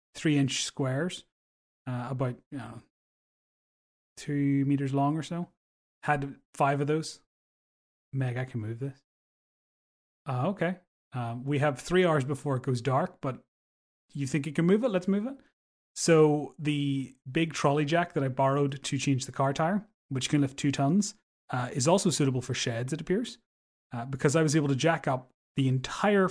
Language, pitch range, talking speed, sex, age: English, 130-160 Hz, 180 wpm, male, 30-49